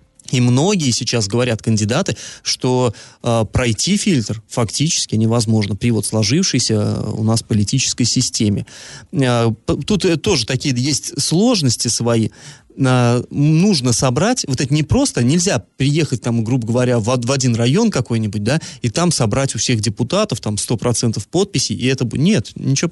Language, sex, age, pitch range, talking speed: Russian, male, 30-49, 120-160 Hz, 150 wpm